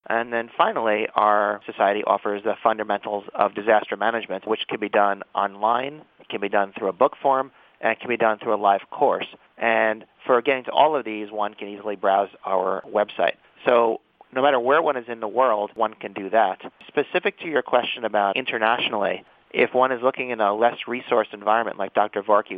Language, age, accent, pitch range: English, 30-49, American, 100-120 Hz